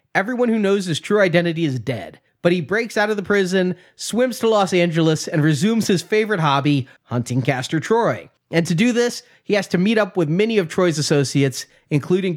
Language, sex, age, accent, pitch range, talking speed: English, male, 30-49, American, 150-205 Hz, 205 wpm